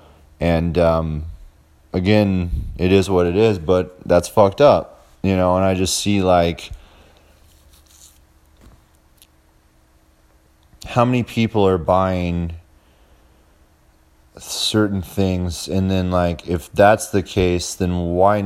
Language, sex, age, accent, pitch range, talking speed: English, male, 30-49, American, 75-95 Hz, 115 wpm